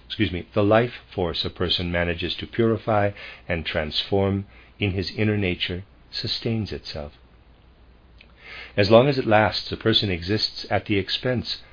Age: 50-69